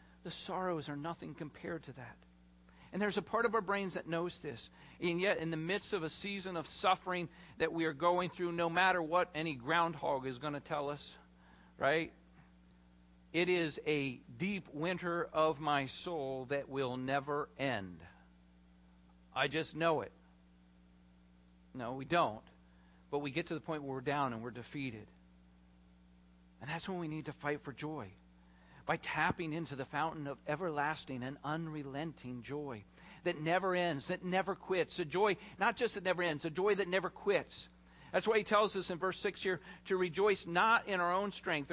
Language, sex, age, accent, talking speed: English, male, 50-69, American, 185 wpm